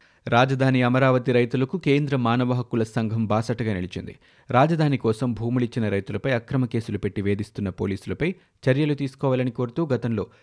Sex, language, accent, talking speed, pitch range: male, Telugu, native, 125 wpm, 110-135 Hz